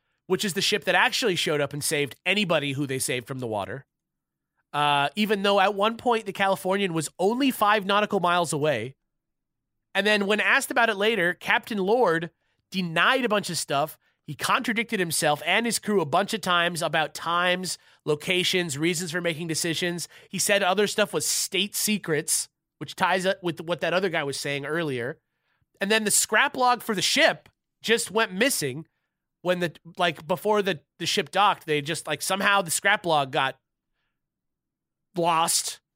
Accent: American